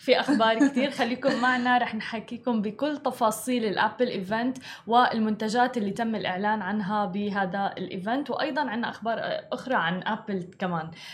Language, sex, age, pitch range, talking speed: Arabic, female, 20-39, 200-245 Hz, 135 wpm